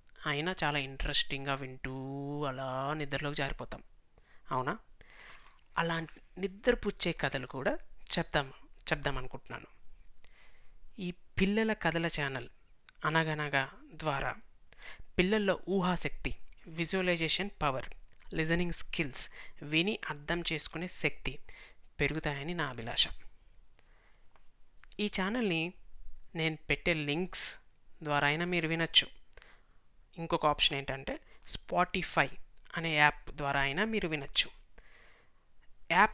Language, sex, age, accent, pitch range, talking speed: Telugu, female, 30-49, native, 135-170 Hz, 85 wpm